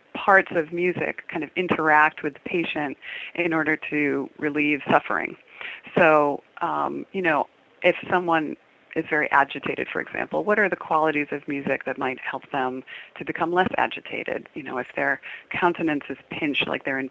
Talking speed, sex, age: 170 wpm, female, 30-49